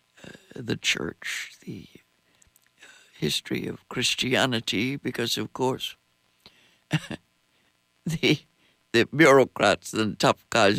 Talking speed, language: 85 wpm, English